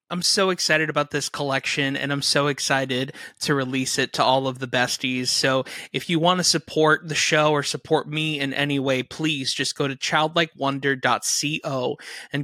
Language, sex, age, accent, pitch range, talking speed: English, male, 20-39, American, 135-165 Hz, 185 wpm